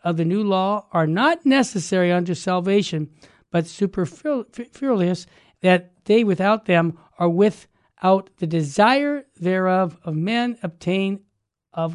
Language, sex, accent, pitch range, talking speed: English, male, American, 165-200 Hz, 135 wpm